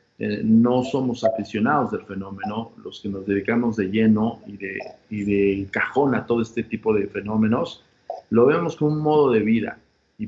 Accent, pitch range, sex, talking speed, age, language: Mexican, 110-145 Hz, male, 180 wpm, 50-69, Spanish